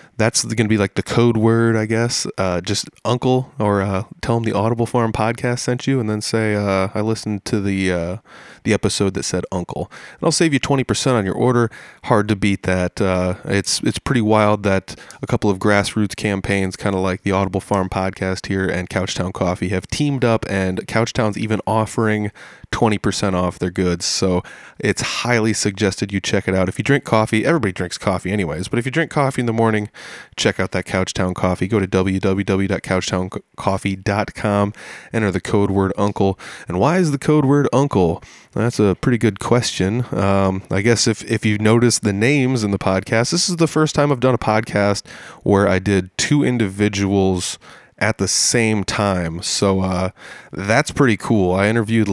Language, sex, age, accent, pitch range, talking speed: English, male, 20-39, American, 95-115 Hz, 195 wpm